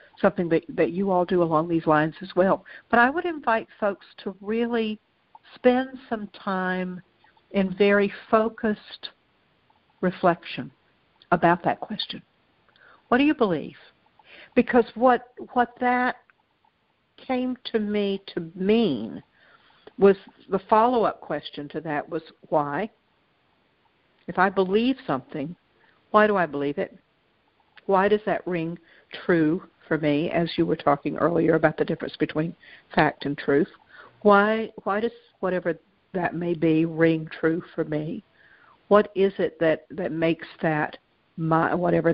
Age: 60-79